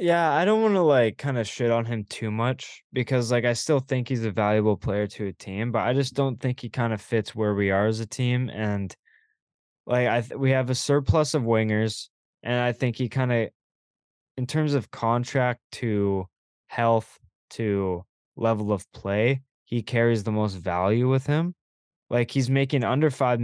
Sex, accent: male, American